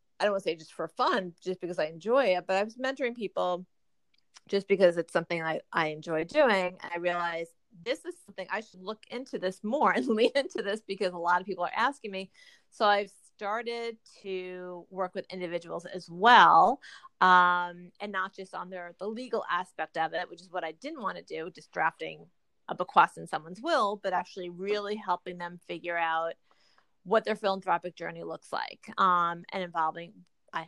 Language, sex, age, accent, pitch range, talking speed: English, female, 30-49, American, 175-220 Hz, 200 wpm